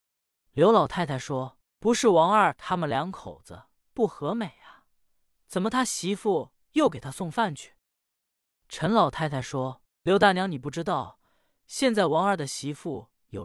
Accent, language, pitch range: native, Chinese, 135-205 Hz